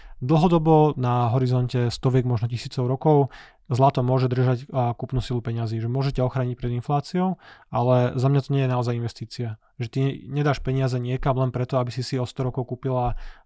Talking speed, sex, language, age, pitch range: 180 wpm, male, Slovak, 20-39, 125-135 Hz